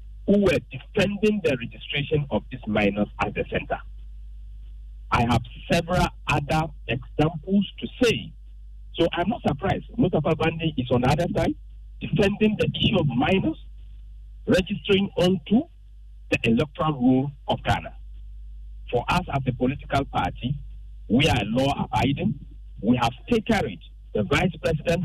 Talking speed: 135 wpm